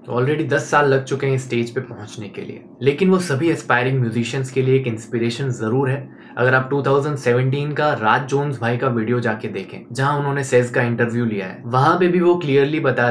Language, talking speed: Hindi, 215 wpm